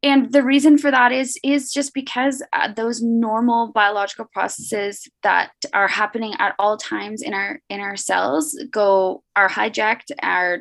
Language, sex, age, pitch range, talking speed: English, female, 20-39, 195-280 Hz, 165 wpm